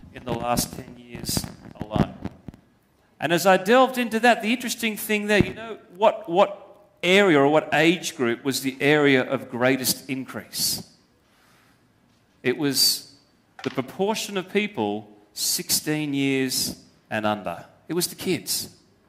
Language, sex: English, male